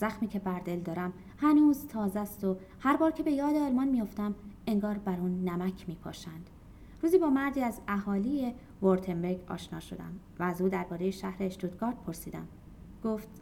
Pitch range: 185-275 Hz